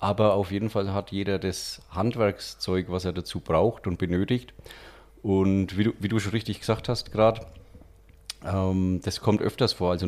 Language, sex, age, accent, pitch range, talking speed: German, male, 30-49, German, 95-110 Hz, 165 wpm